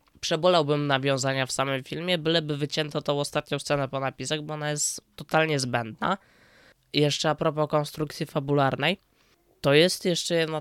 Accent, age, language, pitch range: native, 20-39, Polish, 140-160 Hz